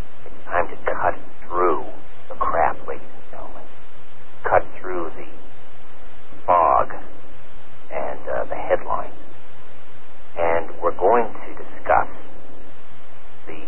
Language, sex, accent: English, male, American